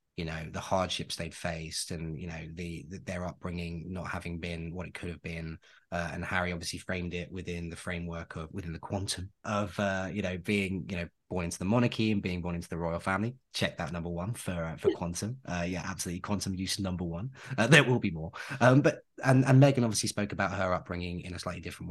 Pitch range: 85-125 Hz